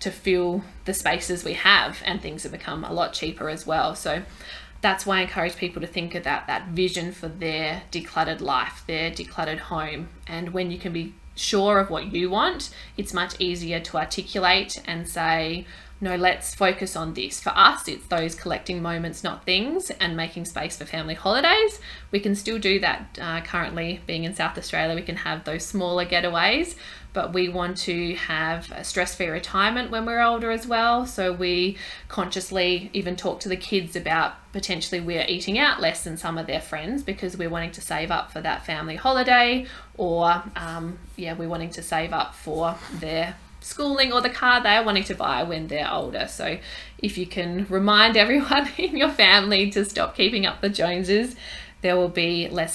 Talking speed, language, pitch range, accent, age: 190 wpm, English, 170-200 Hz, Australian, 20-39